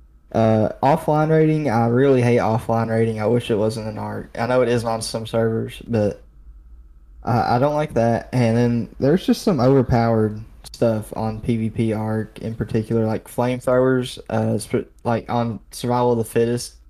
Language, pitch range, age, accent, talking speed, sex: English, 110-125 Hz, 10-29, American, 175 wpm, male